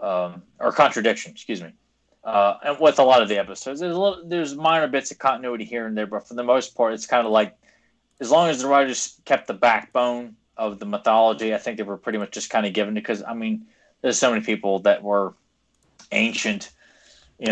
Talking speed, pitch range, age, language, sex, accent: 225 wpm, 105-135 Hz, 20-39, English, male, American